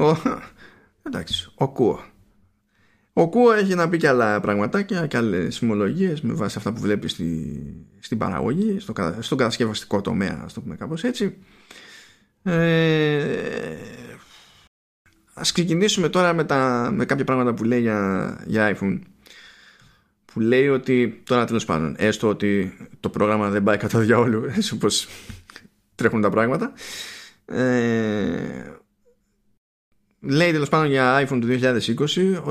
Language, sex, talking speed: Greek, male, 130 wpm